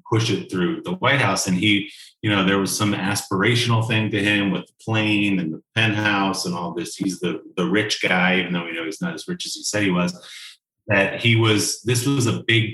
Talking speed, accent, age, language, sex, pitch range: 240 wpm, American, 30-49, English, male, 90-115 Hz